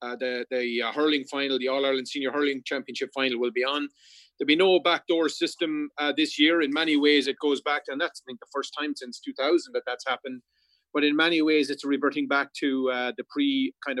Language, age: English, 30-49